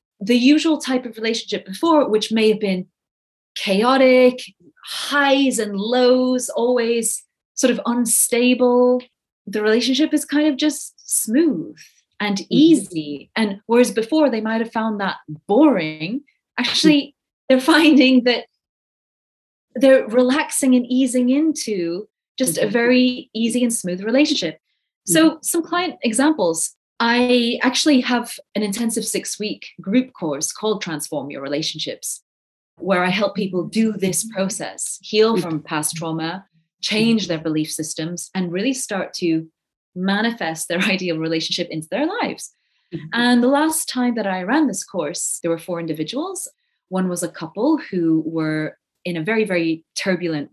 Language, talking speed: English, 140 wpm